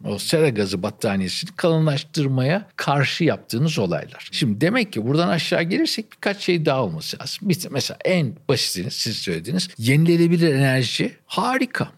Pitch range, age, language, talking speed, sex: 120-175 Hz, 60-79, Turkish, 135 wpm, male